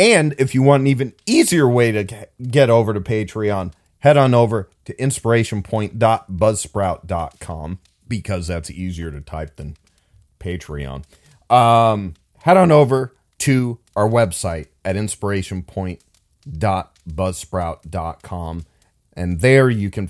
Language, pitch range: English, 85-115 Hz